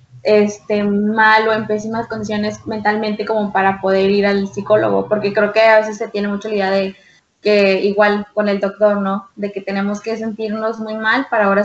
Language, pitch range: Spanish, 205-230 Hz